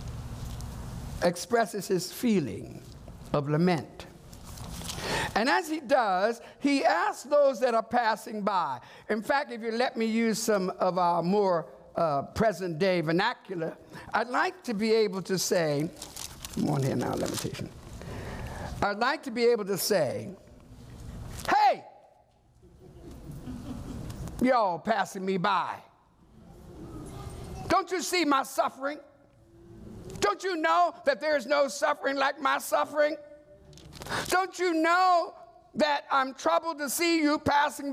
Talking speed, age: 130 wpm, 50-69